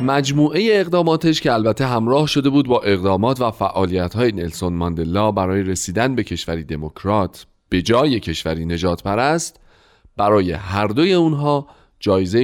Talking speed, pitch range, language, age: 140 wpm, 95-140 Hz, Persian, 40-59